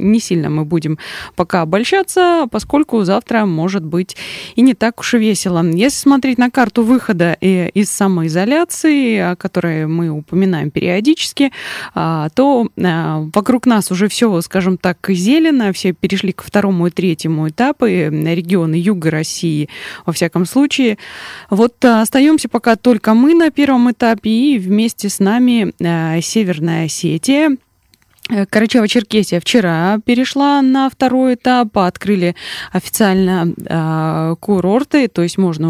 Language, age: Russian, 20-39